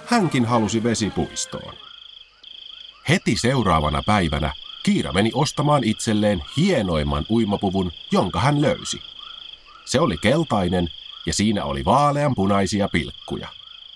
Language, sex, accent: Finnish, male, native